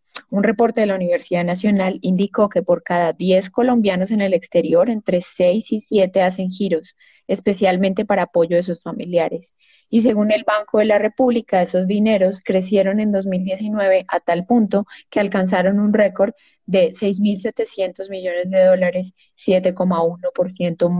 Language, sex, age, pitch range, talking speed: Spanish, female, 20-39, 180-220 Hz, 150 wpm